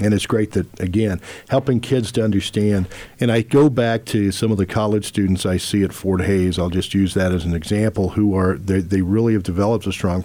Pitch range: 90-110 Hz